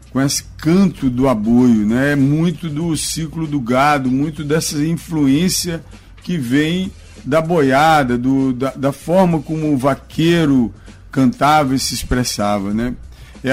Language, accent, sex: Portuguese, Brazilian, male